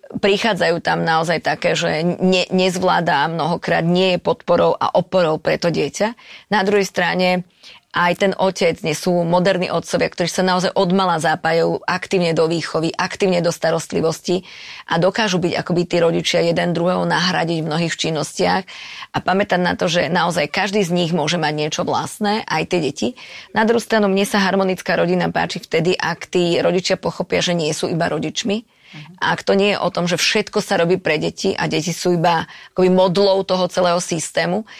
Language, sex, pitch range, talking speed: Slovak, female, 170-195 Hz, 180 wpm